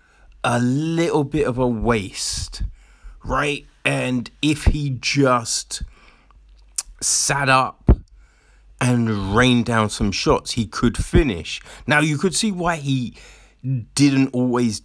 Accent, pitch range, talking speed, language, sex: British, 105-135 Hz, 115 wpm, English, male